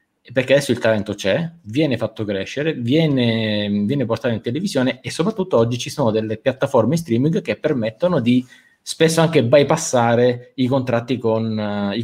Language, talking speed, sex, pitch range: Italian, 145 wpm, male, 110-140 Hz